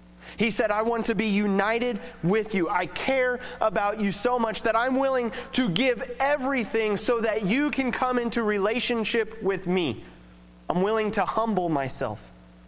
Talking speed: 165 wpm